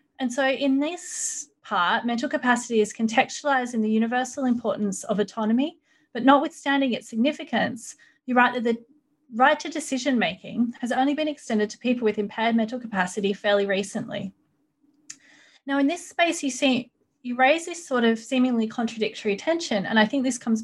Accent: Australian